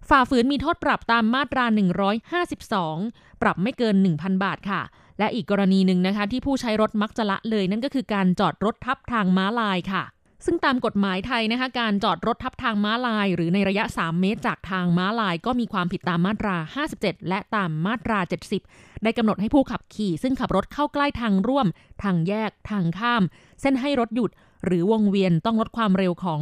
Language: Thai